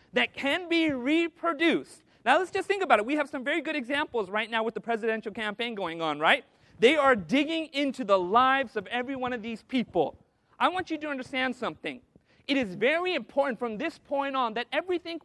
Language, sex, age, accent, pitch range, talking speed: English, male, 40-59, American, 220-285 Hz, 210 wpm